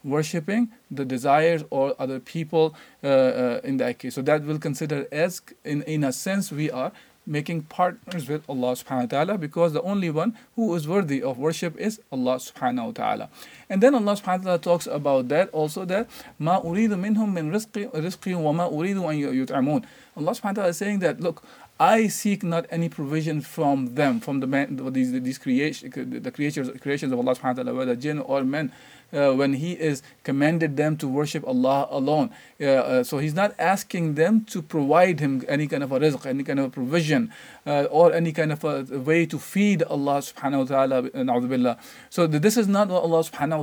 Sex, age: male, 40-59